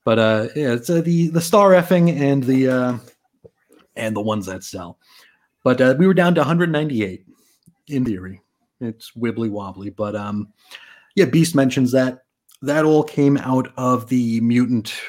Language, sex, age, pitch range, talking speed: English, male, 30-49, 115-140 Hz, 165 wpm